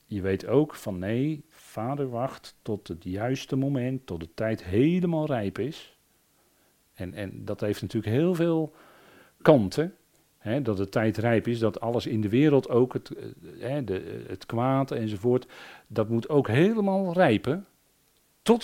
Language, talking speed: Dutch, 160 wpm